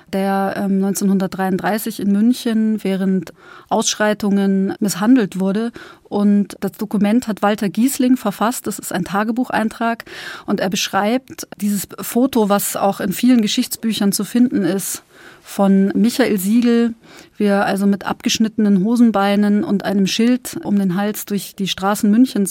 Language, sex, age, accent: German, female, 30-49, German